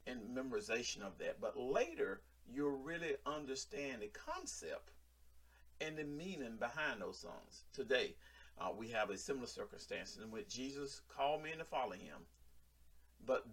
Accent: American